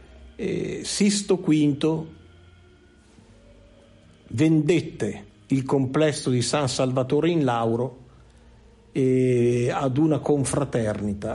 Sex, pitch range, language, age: male, 115-150 Hz, Italian, 50-69